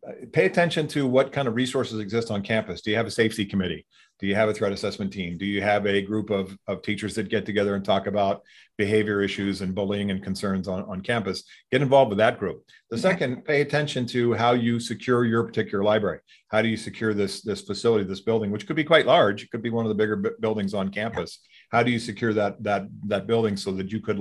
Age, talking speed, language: 40-59, 250 wpm, English